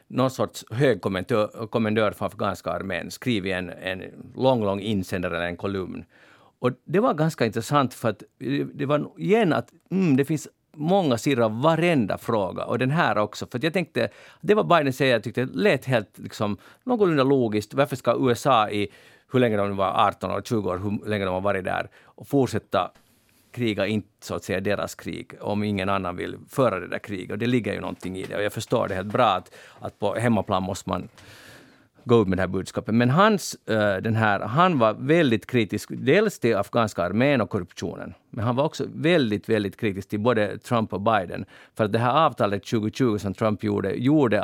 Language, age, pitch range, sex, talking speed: Swedish, 50-69, 100-130 Hz, male, 200 wpm